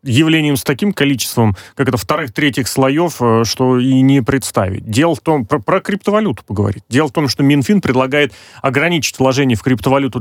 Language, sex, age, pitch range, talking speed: Russian, male, 30-49, 115-150 Hz, 170 wpm